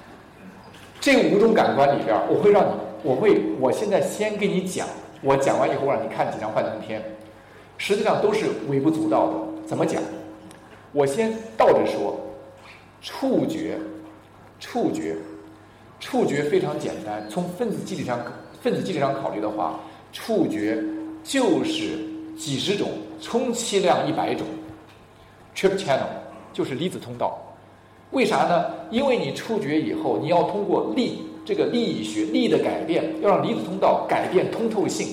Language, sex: Chinese, male